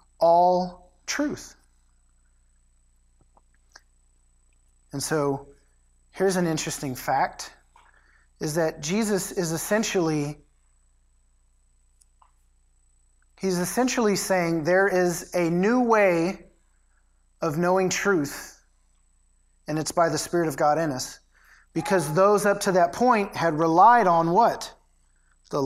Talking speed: 105 wpm